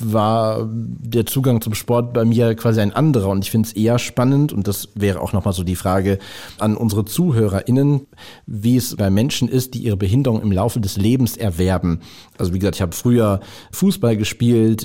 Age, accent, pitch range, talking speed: 40-59, German, 100-125 Hz, 195 wpm